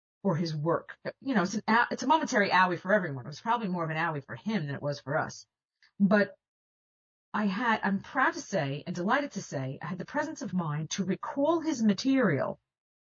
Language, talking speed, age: English, 220 wpm, 50-69